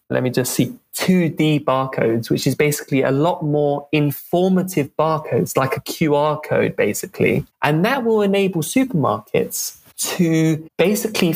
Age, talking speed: 20-39, 135 wpm